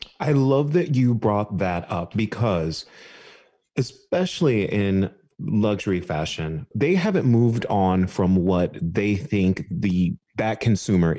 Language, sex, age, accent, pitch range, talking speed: English, male, 30-49, American, 95-135 Hz, 125 wpm